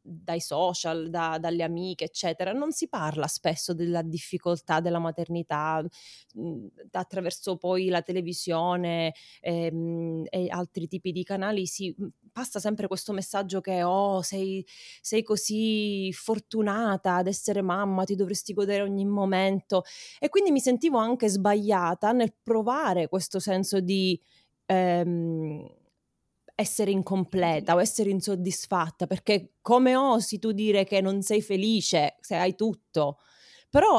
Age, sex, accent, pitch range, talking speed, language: 20-39, female, native, 180-220 Hz, 130 wpm, Italian